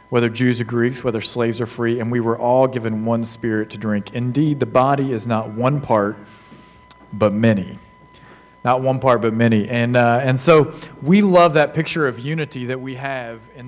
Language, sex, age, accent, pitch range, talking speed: English, male, 40-59, American, 115-135 Hz, 200 wpm